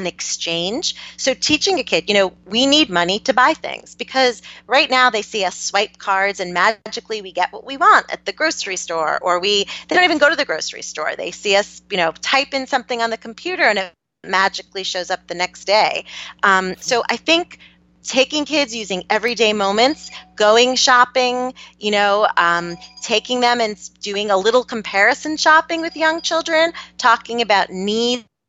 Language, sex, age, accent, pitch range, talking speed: English, female, 30-49, American, 185-260 Hz, 190 wpm